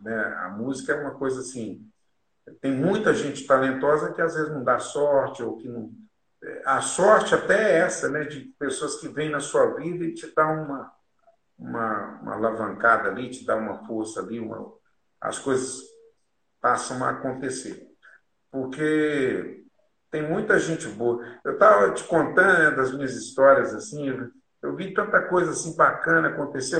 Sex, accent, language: male, Brazilian, Portuguese